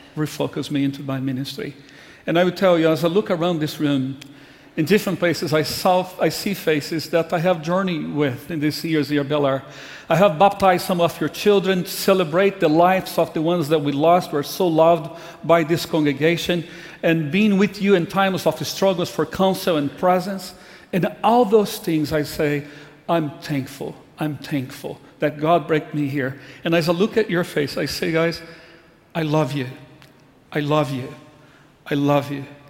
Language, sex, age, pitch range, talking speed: English, male, 50-69, 145-180 Hz, 190 wpm